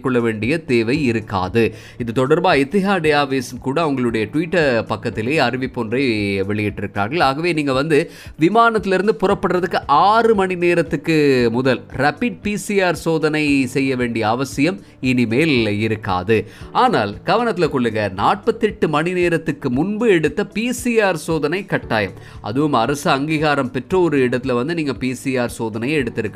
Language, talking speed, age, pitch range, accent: Tamil, 55 wpm, 30-49, 120-170 Hz, native